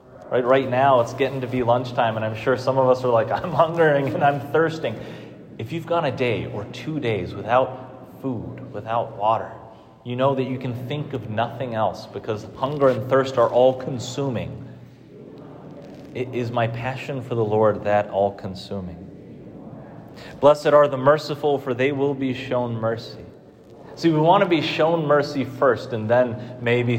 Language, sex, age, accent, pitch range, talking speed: English, male, 30-49, American, 115-145 Hz, 175 wpm